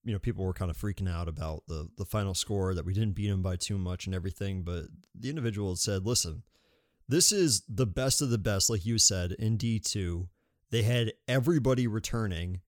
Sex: male